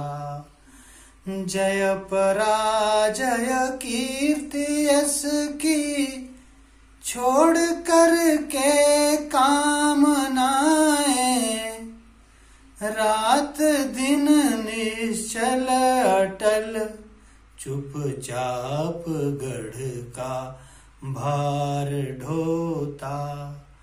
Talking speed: 45 wpm